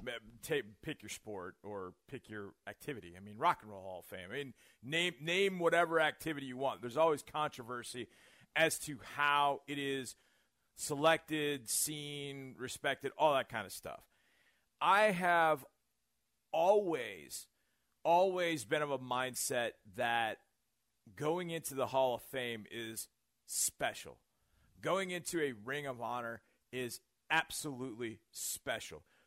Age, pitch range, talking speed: 40-59, 120-160 Hz, 135 wpm